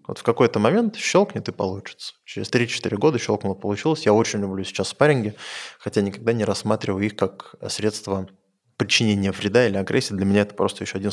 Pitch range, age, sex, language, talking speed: 100-120 Hz, 20-39, male, Russian, 185 wpm